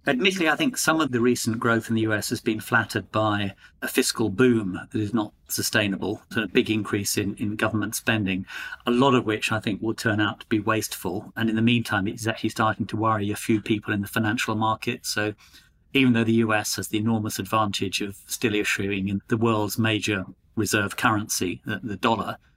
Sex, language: male, English